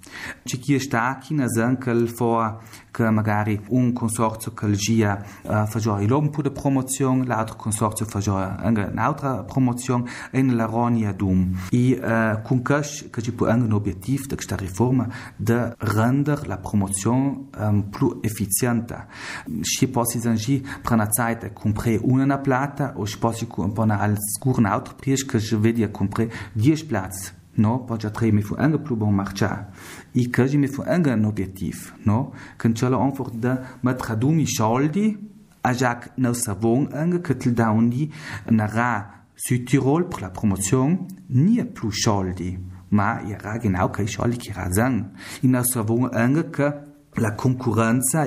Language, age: Italian, 30-49